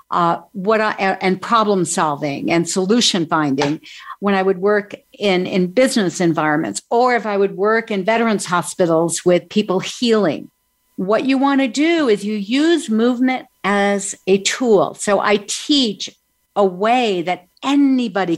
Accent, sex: American, female